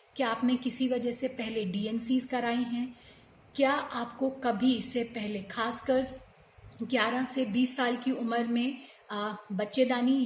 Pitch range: 230-260 Hz